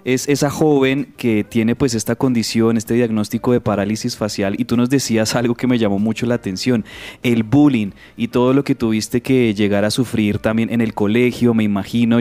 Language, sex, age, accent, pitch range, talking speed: Spanish, male, 20-39, Colombian, 105-125 Hz, 200 wpm